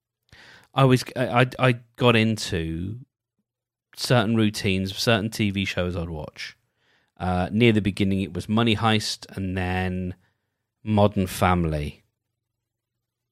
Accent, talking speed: British, 115 wpm